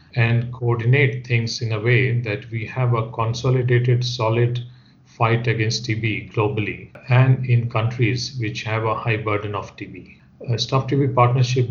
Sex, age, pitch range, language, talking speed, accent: male, 40-59, 110-125 Hz, English, 155 wpm, Indian